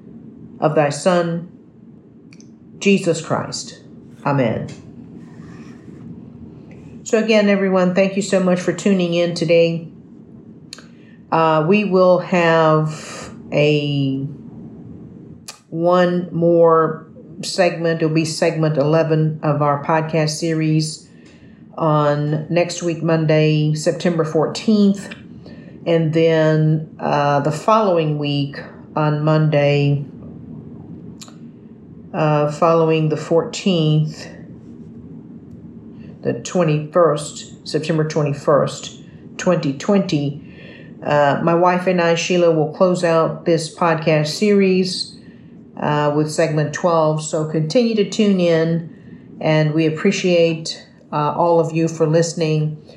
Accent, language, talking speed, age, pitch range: American, English, 100 wpm, 50-69, 150-175 Hz